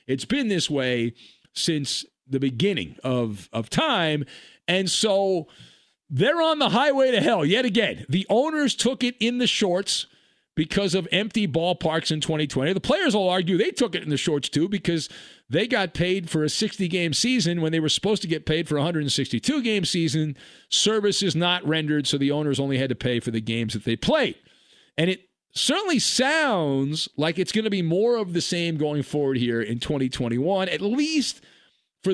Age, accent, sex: 50-69, American, male